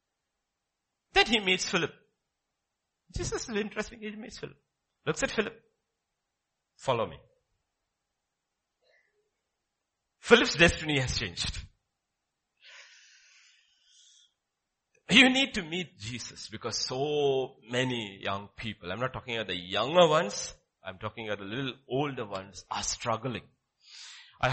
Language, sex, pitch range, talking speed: English, male, 115-185 Hz, 115 wpm